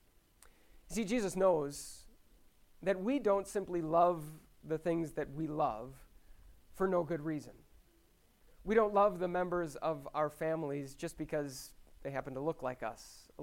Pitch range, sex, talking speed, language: 150-190 Hz, male, 150 wpm, English